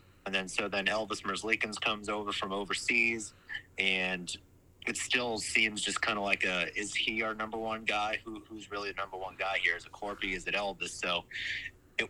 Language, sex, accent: English, male, American